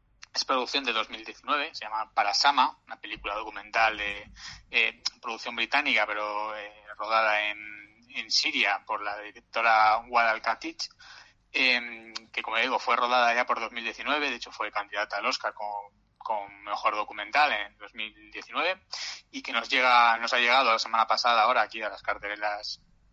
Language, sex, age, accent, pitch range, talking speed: Spanish, male, 20-39, Spanish, 110-140 Hz, 160 wpm